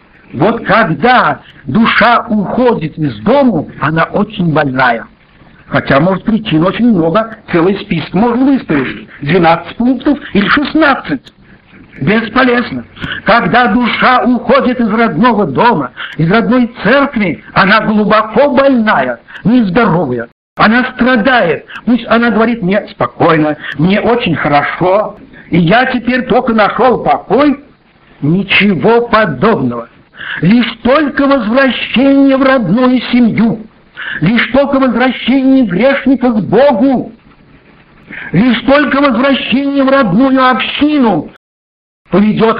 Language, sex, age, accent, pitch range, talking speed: Russian, male, 60-79, native, 200-255 Hz, 105 wpm